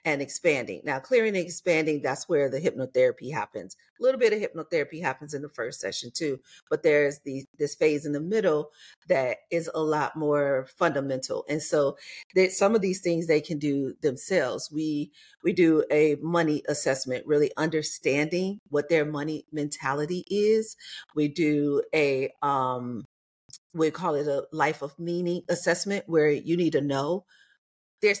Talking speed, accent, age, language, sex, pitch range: 165 wpm, American, 40-59, English, female, 145-185 Hz